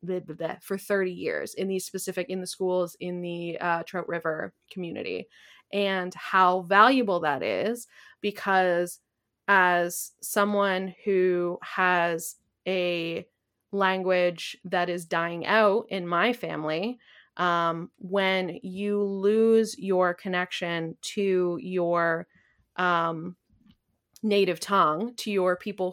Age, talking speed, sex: 20-39, 110 wpm, female